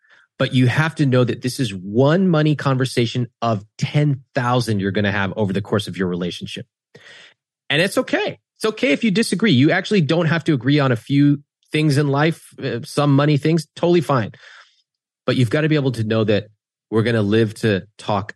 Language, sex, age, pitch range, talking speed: English, male, 30-49, 110-160 Hz, 205 wpm